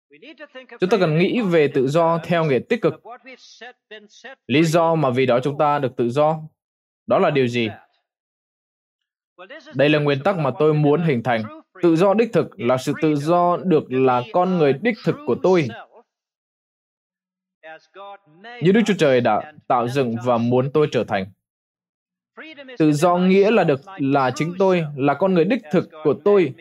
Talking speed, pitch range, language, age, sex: 175 wpm, 140-195 Hz, Vietnamese, 20-39, male